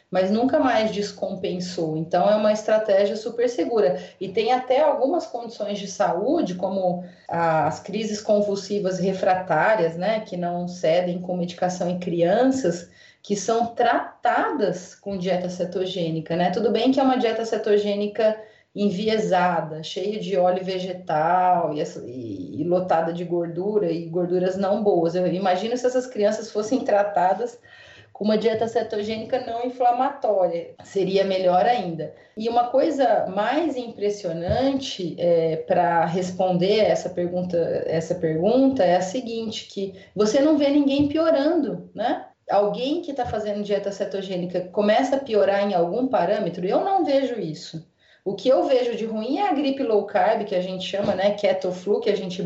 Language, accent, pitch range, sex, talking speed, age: Portuguese, Brazilian, 180-230 Hz, female, 150 wpm, 30-49